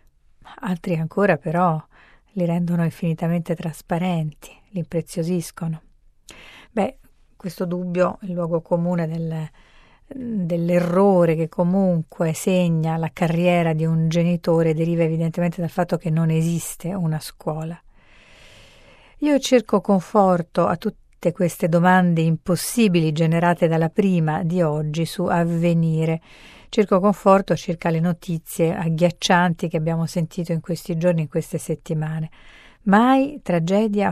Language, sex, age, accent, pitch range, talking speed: Italian, female, 40-59, native, 165-180 Hz, 120 wpm